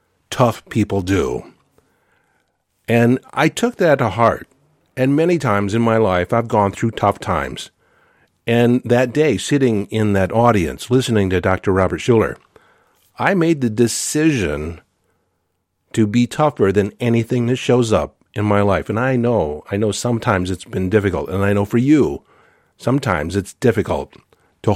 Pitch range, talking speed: 100-120 Hz, 160 wpm